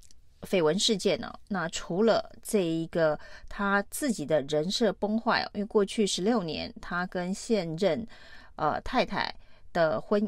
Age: 30-49